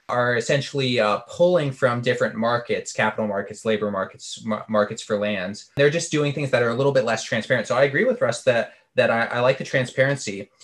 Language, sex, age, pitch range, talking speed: English, male, 20-39, 110-140 Hz, 210 wpm